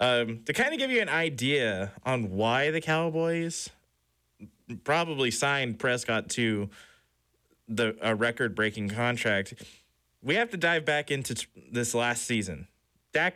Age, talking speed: 20-39, 140 wpm